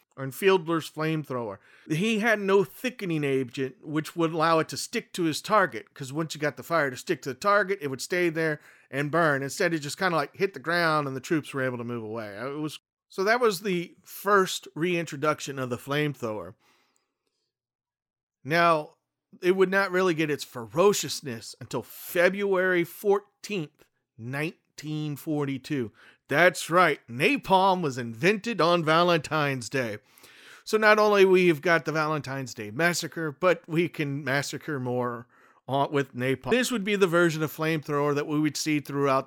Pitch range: 135-175 Hz